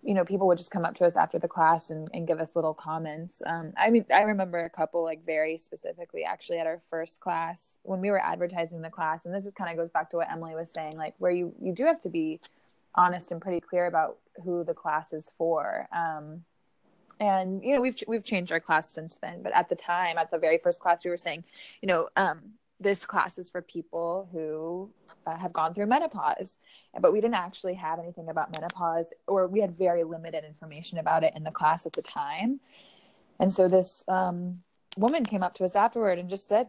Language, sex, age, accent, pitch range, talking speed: English, female, 20-39, American, 165-195 Hz, 230 wpm